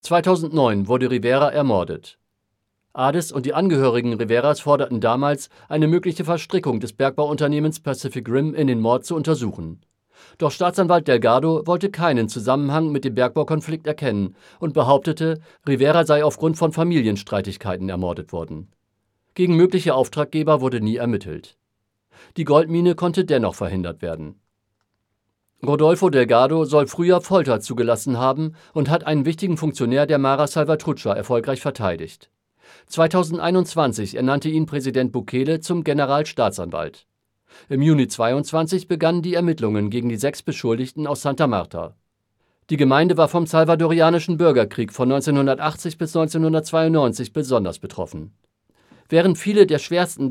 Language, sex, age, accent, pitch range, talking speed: German, male, 50-69, German, 120-160 Hz, 130 wpm